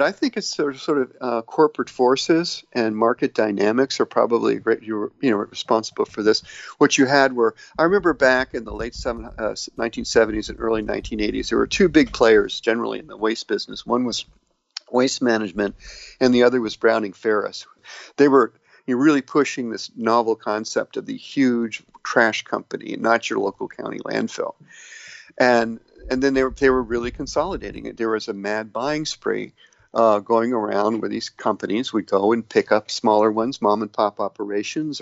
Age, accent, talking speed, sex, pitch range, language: 50-69, American, 180 wpm, male, 110-135 Hz, English